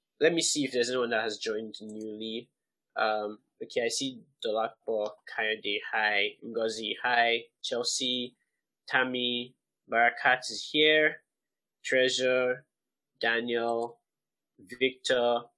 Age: 20-39